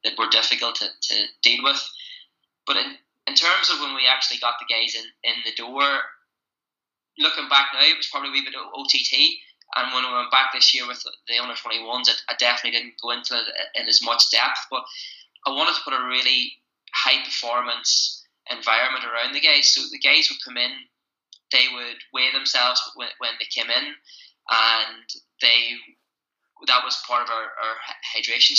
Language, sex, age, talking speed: English, male, 20-39, 190 wpm